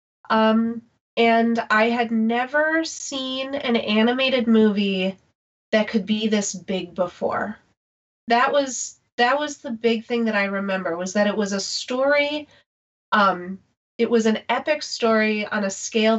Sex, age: female, 30-49